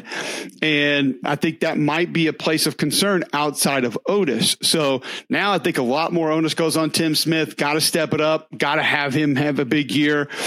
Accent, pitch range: American, 145-175 Hz